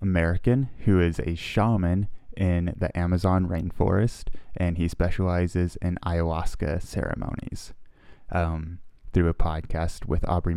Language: English